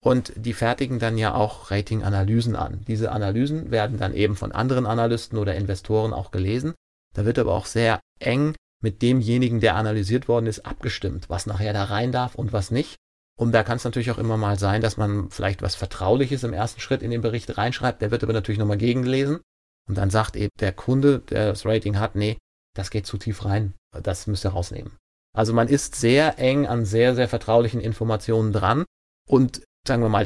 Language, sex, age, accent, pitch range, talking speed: German, male, 30-49, German, 100-120 Hz, 205 wpm